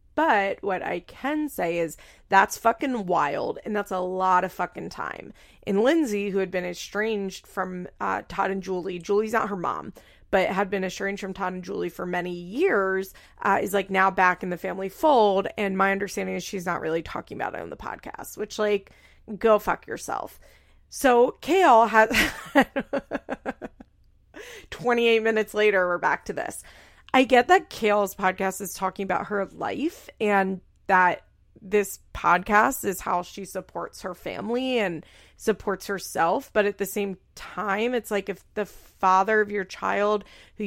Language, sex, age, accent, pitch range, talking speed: English, female, 30-49, American, 190-220 Hz, 170 wpm